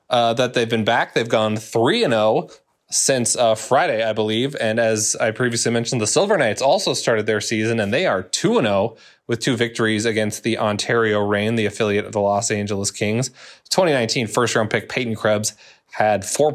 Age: 20-39